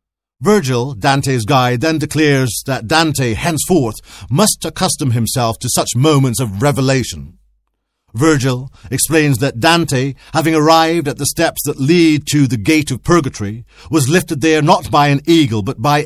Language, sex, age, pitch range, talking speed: English, male, 50-69, 125-160 Hz, 155 wpm